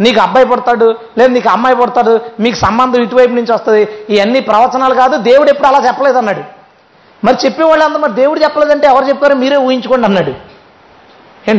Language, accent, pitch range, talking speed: Telugu, native, 225-310 Hz, 160 wpm